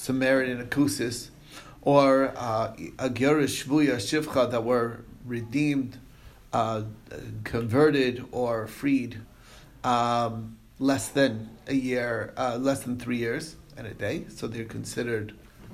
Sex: male